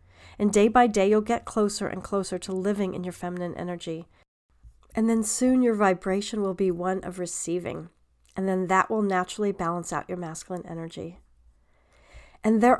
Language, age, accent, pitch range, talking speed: English, 40-59, American, 170-205 Hz, 175 wpm